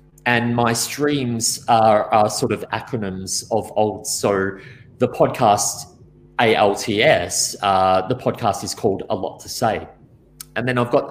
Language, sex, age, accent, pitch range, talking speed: English, male, 30-49, Australian, 95-125 Hz, 145 wpm